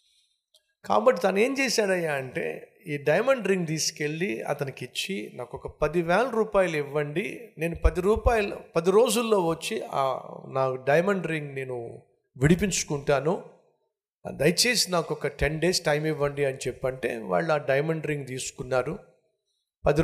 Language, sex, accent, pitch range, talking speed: Telugu, male, native, 140-200 Hz, 125 wpm